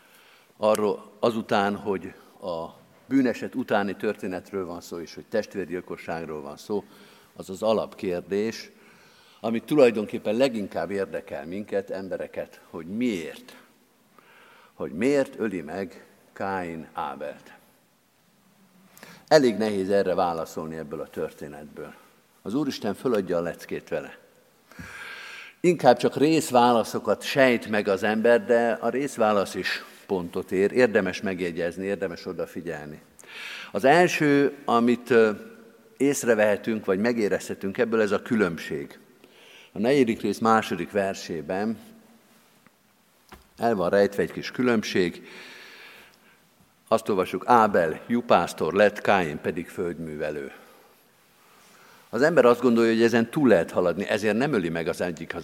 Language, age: Hungarian, 50-69